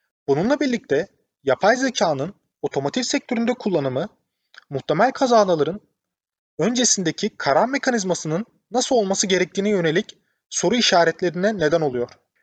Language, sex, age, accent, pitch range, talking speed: Turkish, male, 30-49, native, 155-230 Hz, 95 wpm